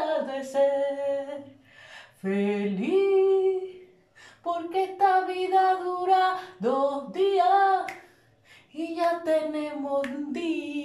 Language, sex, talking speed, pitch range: Spanish, female, 70 wpm, 275-370 Hz